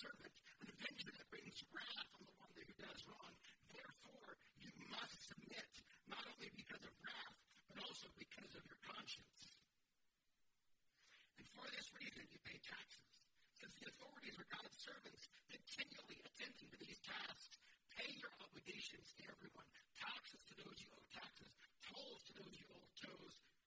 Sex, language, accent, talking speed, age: male, English, American, 155 wpm, 50-69